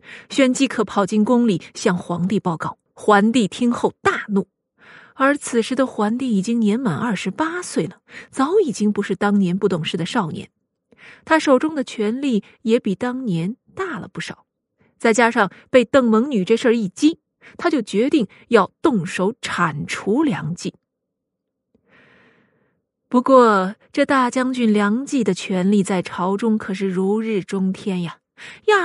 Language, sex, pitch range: Chinese, female, 200-270 Hz